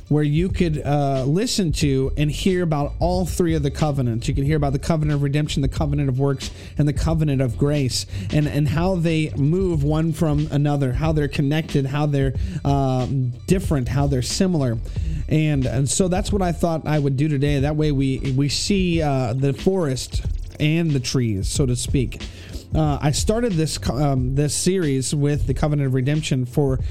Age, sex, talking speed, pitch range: 30-49, male, 195 wpm, 135-170 Hz